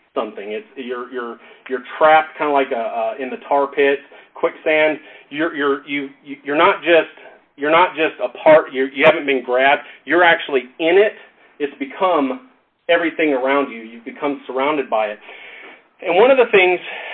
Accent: American